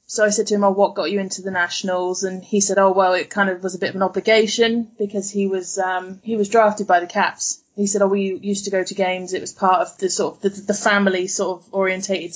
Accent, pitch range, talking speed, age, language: British, 185-210 Hz, 280 wpm, 20-39, English